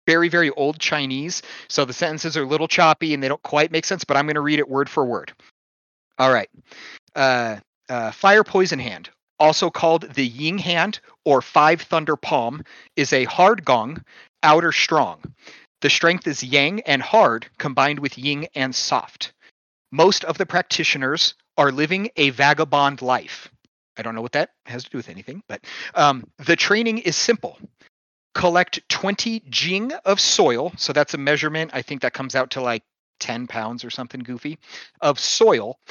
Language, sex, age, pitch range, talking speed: English, male, 40-59, 140-180 Hz, 180 wpm